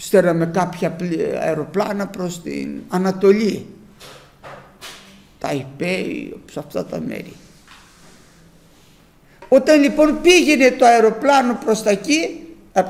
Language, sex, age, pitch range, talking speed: Greek, male, 60-79, 195-310 Hz, 95 wpm